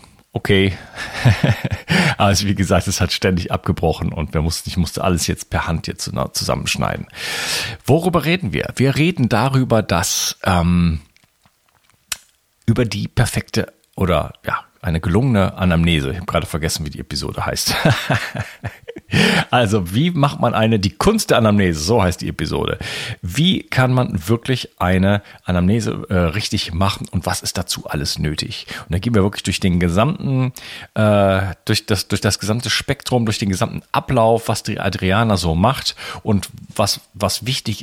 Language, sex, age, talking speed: German, male, 40-59, 155 wpm